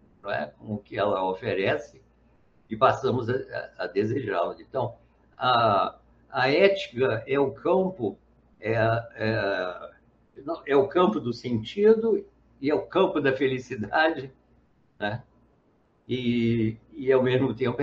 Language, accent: Portuguese, Brazilian